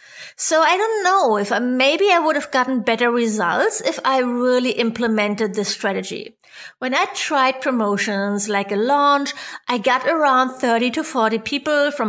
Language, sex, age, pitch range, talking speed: English, female, 30-49, 230-310 Hz, 165 wpm